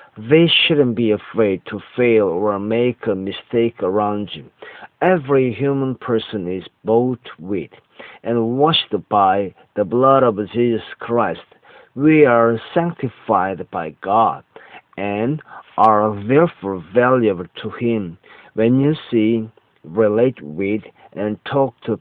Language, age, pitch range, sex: Korean, 50-69, 100-130 Hz, male